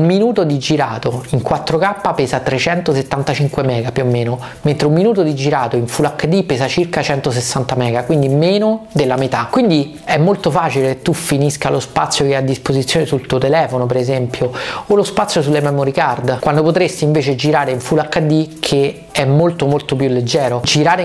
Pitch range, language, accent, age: 135-165 Hz, Italian, native, 30-49